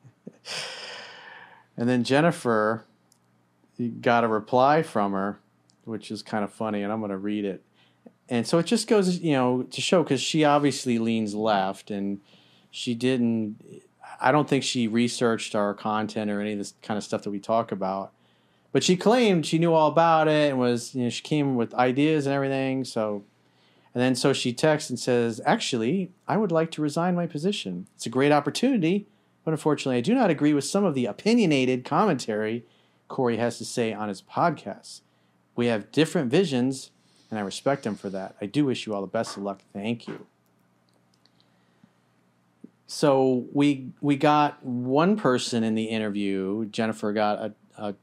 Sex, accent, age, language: male, American, 40-59, English